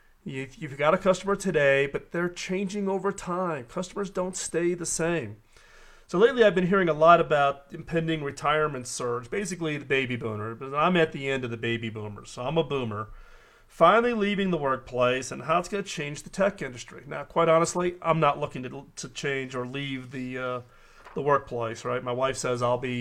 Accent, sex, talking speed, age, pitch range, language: American, male, 200 wpm, 40-59, 135-185 Hz, English